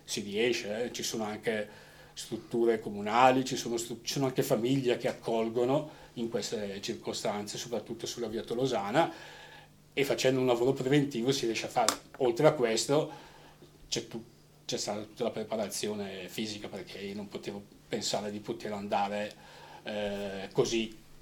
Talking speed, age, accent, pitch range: 150 wpm, 40-59, native, 110-130 Hz